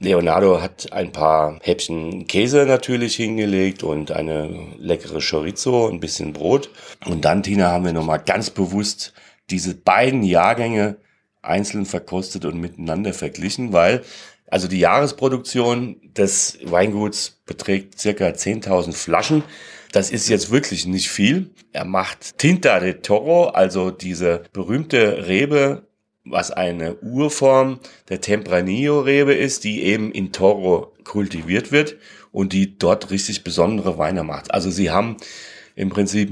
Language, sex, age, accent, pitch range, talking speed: German, male, 40-59, German, 95-125 Hz, 130 wpm